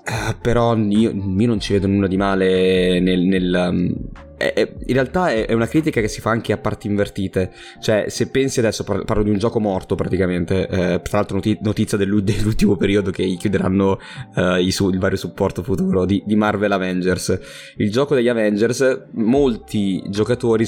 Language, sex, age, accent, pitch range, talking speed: Italian, male, 20-39, native, 95-110 Hz, 185 wpm